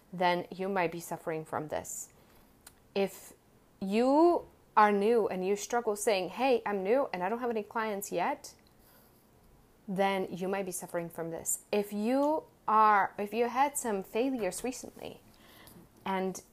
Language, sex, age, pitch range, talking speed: English, female, 30-49, 190-225 Hz, 155 wpm